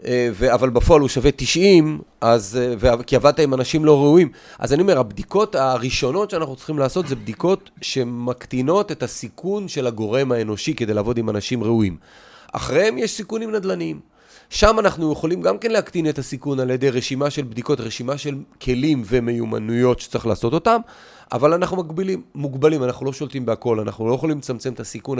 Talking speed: 175 wpm